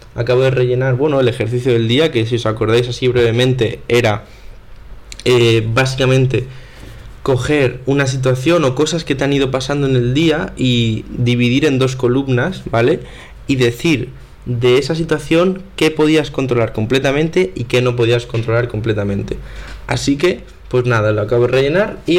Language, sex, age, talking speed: Spanish, male, 20-39, 160 wpm